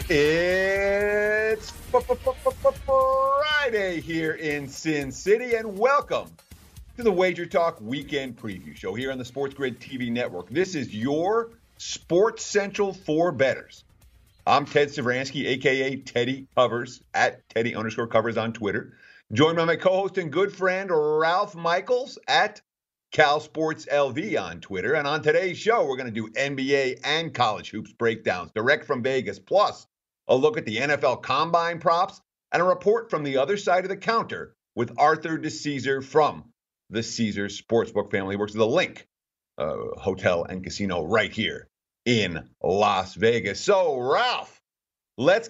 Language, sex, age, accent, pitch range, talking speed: English, male, 50-69, American, 130-195 Hz, 160 wpm